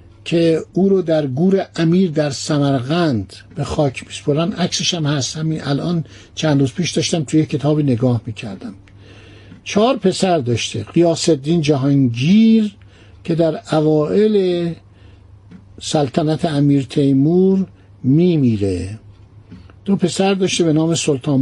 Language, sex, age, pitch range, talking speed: Persian, male, 60-79, 110-180 Hz, 120 wpm